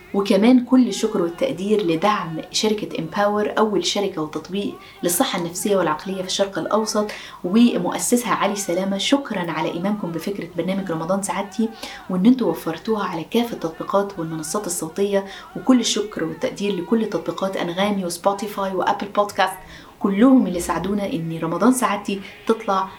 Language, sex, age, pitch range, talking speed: Arabic, female, 20-39, 175-210 Hz, 130 wpm